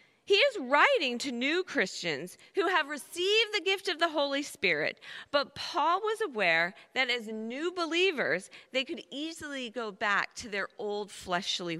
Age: 40-59